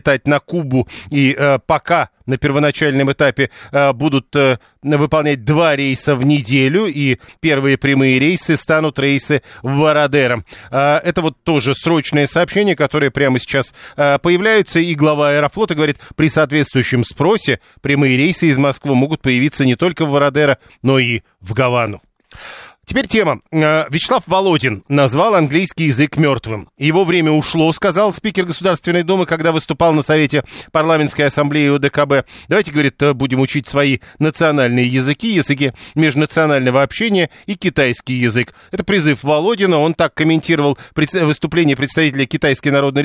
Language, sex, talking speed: Russian, male, 140 wpm